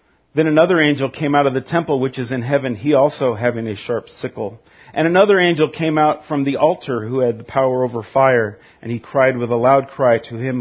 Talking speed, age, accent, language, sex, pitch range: 230 wpm, 40-59, American, English, male, 120-155 Hz